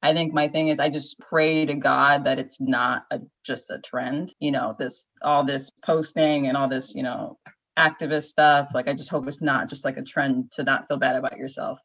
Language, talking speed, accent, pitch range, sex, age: English, 230 wpm, American, 145-185 Hz, female, 20-39